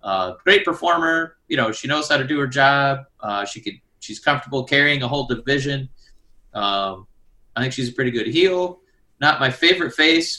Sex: male